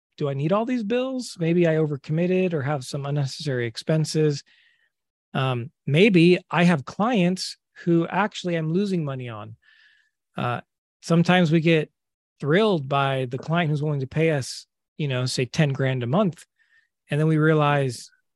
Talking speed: 160 wpm